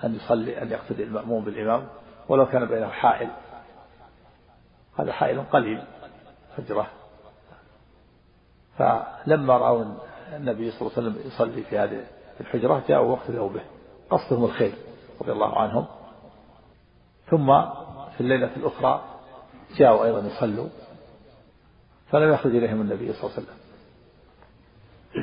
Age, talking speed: 50-69, 110 wpm